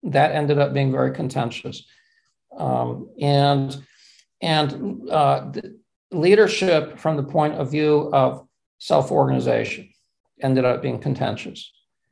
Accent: American